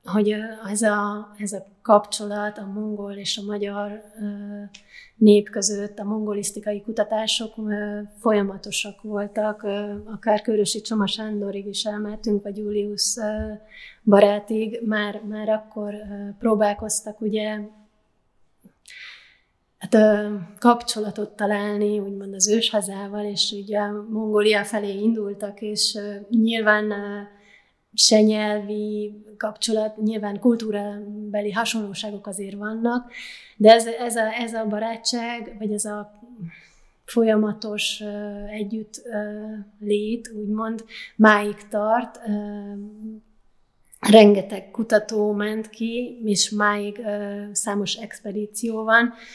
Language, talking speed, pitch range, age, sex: Hungarian, 95 wpm, 205-220 Hz, 20-39, female